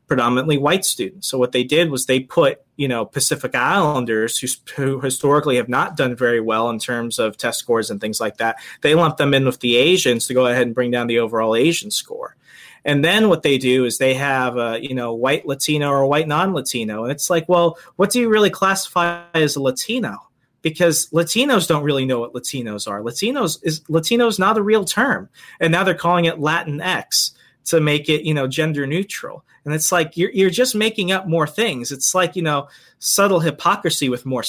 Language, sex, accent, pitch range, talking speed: English, male, American, 130-170 Hz, 215 wpm